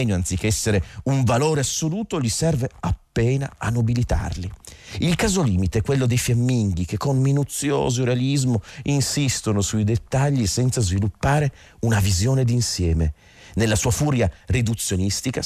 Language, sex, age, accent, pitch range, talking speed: Italian, male, 40-59, native, 95-130 Hz, 130 wpm